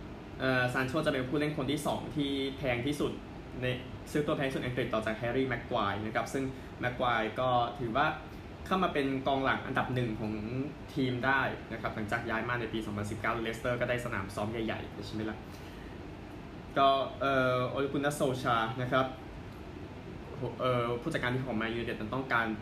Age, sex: 20-39, male